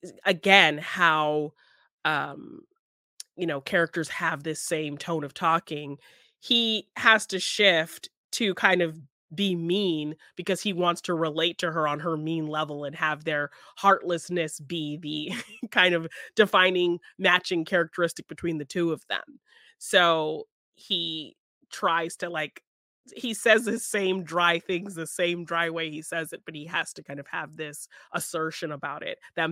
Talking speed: 160 wpm